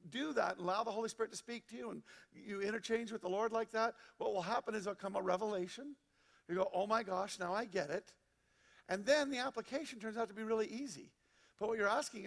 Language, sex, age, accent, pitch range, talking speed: English, male, 50-69, American, 190-235 Hz, 240 wpm